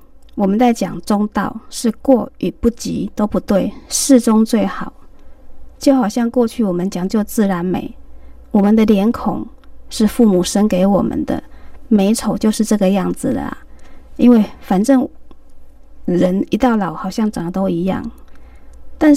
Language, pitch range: Chinese, 195-255 Hz